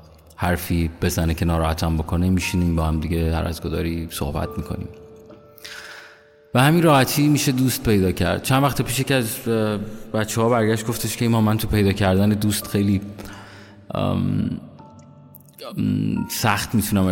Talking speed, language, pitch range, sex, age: 135 wpm, Persian, 90-110 Hz, male, 30-49